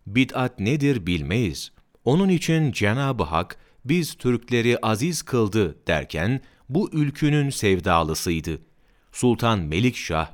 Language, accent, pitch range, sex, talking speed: Turkish, native, 90-125 Hz, male, 100 wpm